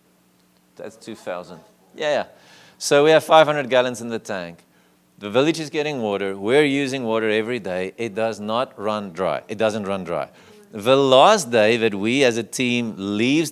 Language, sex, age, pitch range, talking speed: English, male, 40-59, 105-150 Hz, 175 wpm